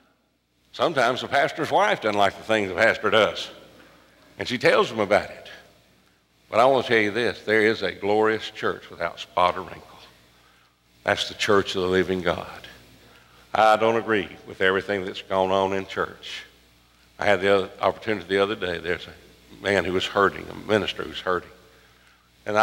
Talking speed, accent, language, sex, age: 180 wpm, American, English, male, 60-79